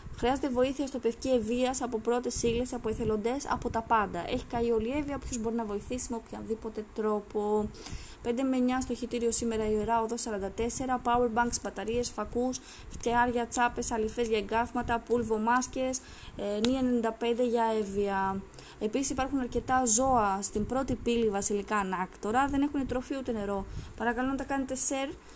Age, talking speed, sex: 20-39, 155 wpm, female